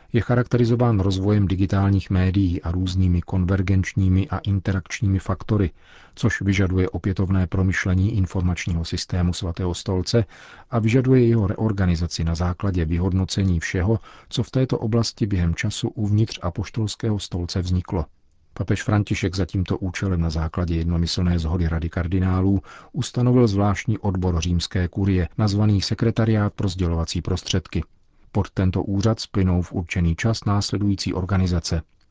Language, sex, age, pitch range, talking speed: Czech, male, 40-59, 90-105 Hz, 125 wpm